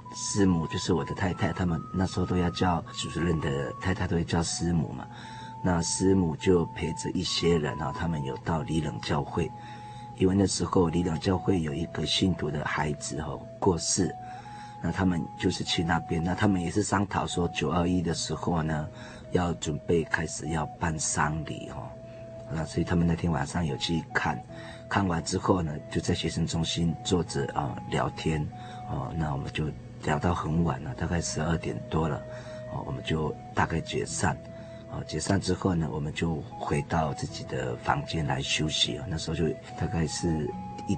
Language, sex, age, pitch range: Chinese, male, 40-59, 85-105 Hz